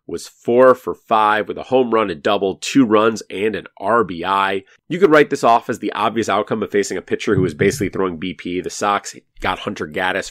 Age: 30-49